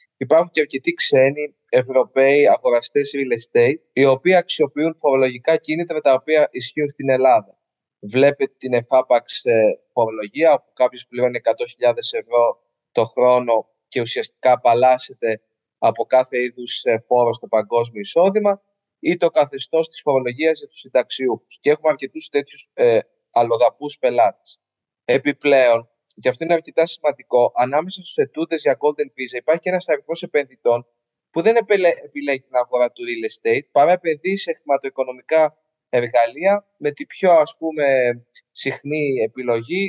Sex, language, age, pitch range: male, Greek, 20-39, 130-170 Hz